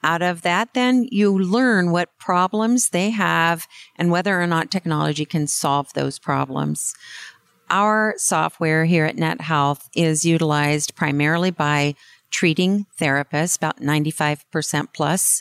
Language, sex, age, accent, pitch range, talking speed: English, female, 50-69, American, 155-200 Hz, 130 wpm